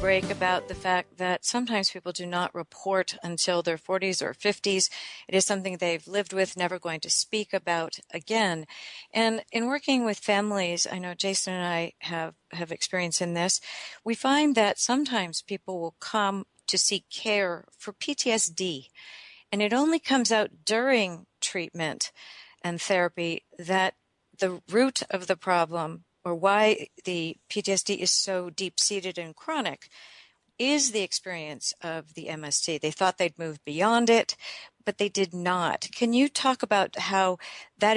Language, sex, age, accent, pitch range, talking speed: English, female, 50-69, American, 175-225 Hz, 160 wpm